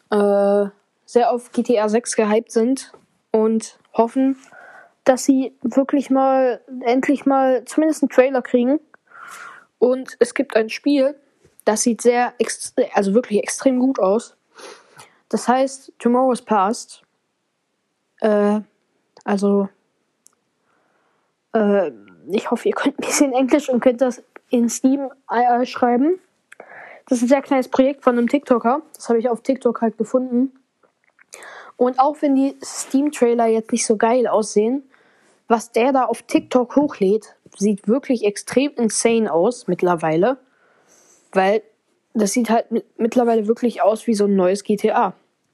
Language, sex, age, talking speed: German, female, 10-29, 135 wpm